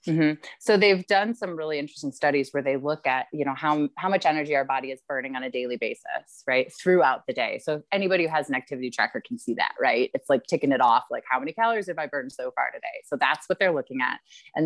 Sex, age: female, 20-39